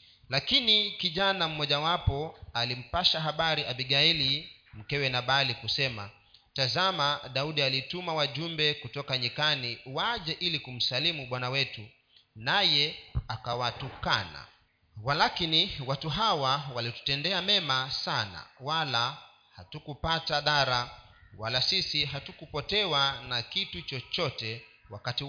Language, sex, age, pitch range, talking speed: Swahili, male, 40-59, 120-160 Hz, 95 wpm